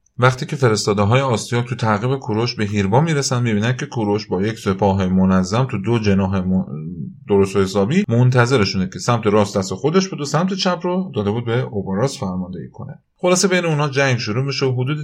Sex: male